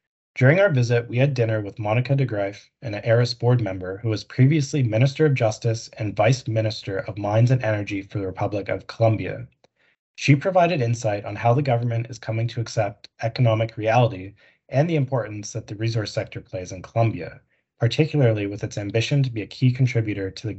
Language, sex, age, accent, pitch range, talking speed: English, male, 20-39, American, 105-125 Hz, 190 wpm